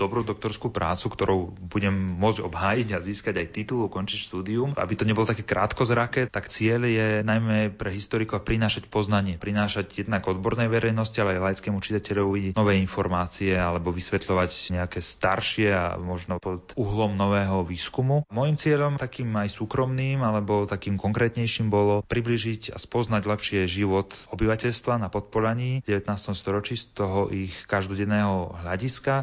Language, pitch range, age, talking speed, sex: Slovak, 95-110 Hz, 30-49, 145 wpm, male